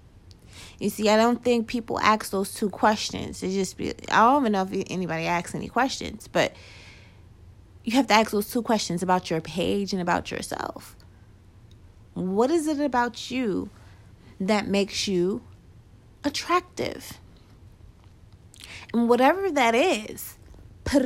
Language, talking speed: English, 140 wpm